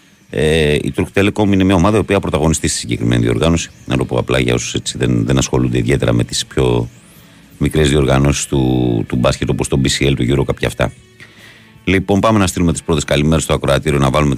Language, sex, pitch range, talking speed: Greek, male, 70-95 Hz, 210 wpm